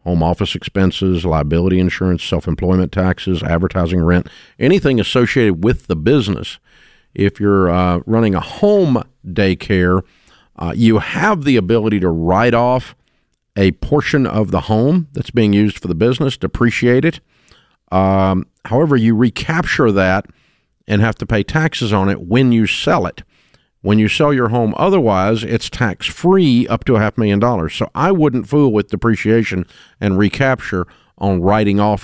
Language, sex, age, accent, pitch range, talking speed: English, male, 50-69, American, 95-130 Hz, 155 wpm